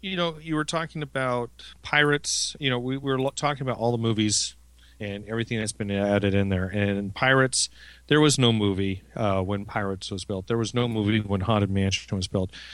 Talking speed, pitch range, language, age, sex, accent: 205 wpm, 100-130 Hz, English, 40-59, male, American